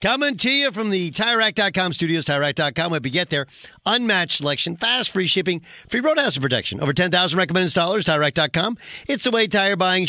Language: English